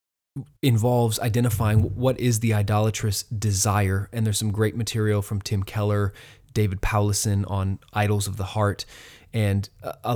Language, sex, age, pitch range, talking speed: English, male, 20-39, 105-120 Hz, 140 wpm